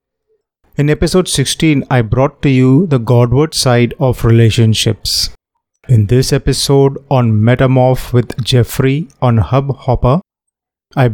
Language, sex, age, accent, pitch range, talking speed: Hindi, male, 30-49, native, 120-140 Hz, 125 wpm